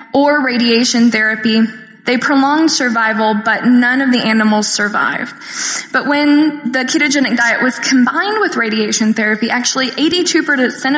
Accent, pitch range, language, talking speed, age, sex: American, 230-275 Hz, English, 130 wpm, 10-29, female